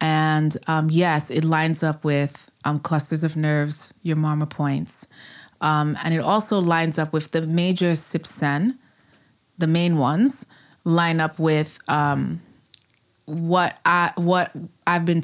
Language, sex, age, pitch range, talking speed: English, female, 20-39, 145-165 Hz, 140 wpm